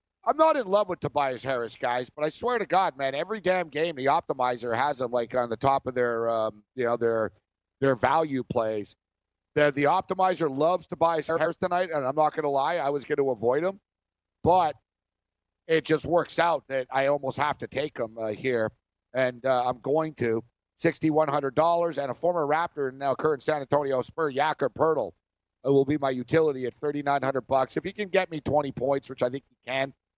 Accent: American